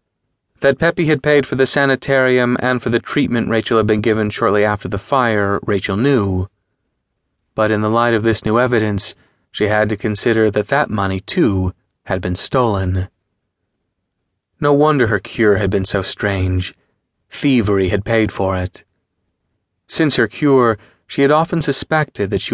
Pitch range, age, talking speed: 100-125 Hz, 30-49, 165 wpm